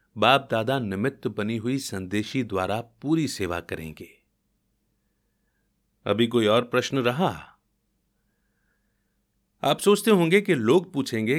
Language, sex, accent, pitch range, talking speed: Hindi, male, native, 100-140 Hz, 110 wpm